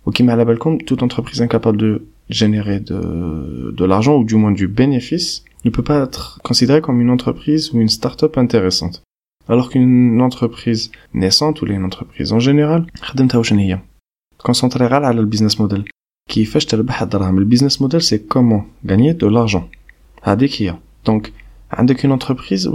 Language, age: French, 20-39